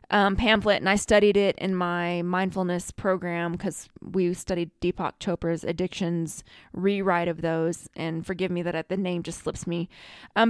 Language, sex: English, female